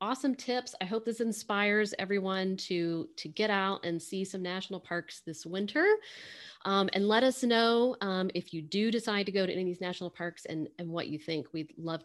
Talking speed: 215 wpm